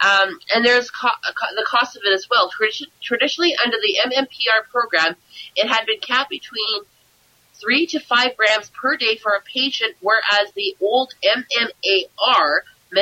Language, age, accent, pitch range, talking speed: English, 30-49, American, 190-250 Hz, 145 wpm